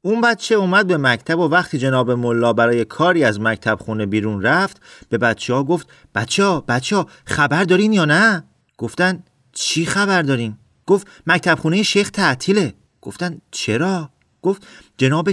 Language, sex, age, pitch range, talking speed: Persian, male, 40-59, 120-175 Hz, 160 wpm